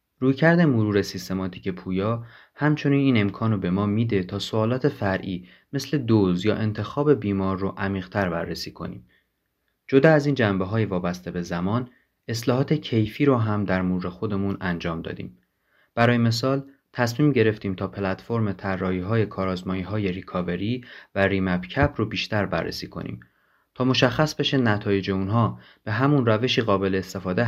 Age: 30-49